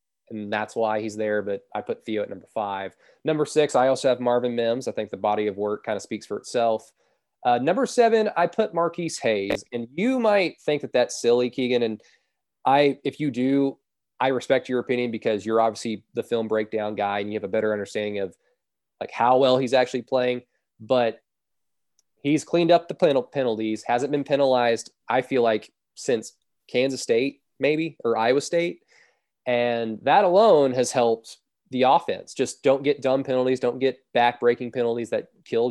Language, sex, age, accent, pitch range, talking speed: English, male, 20-39, American, 110-145 Hz, 185 wpm